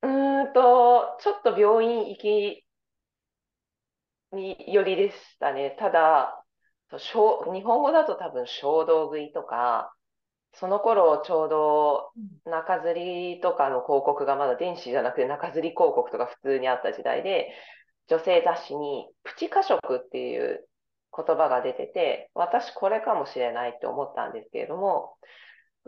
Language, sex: Japanese, female